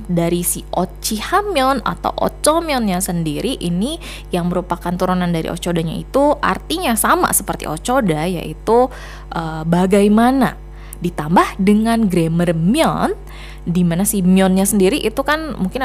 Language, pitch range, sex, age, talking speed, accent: Indonesian, 165-240 Hz, female, 20-39, 120 wpm, native